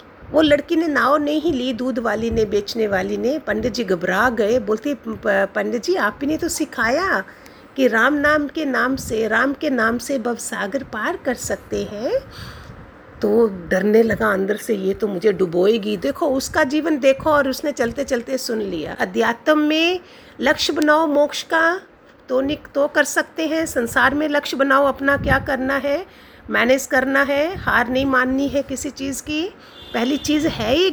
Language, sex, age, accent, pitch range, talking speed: Hindi, female, 50-69, native, 220-290 Hz, 175 wpm